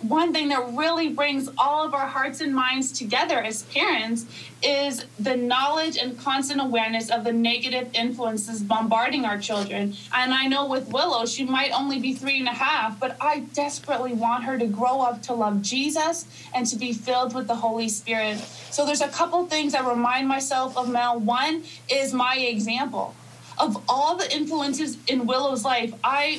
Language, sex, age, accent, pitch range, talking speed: English, female, 20-39, American, 235-280 Hz, 185 wpm